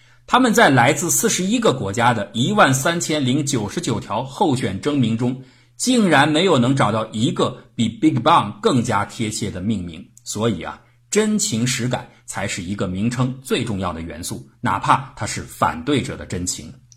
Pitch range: 110-130 Hz